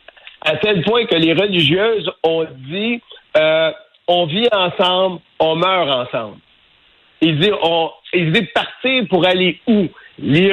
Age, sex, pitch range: 60-79, male, 155-190 Hz